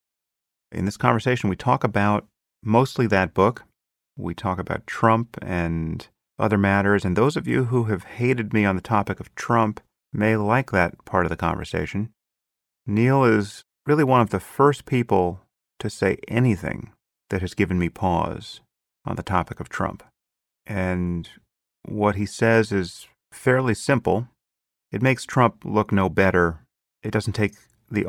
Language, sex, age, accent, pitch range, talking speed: English, male, 40-59, American, 90-110 Hz, 160 wpm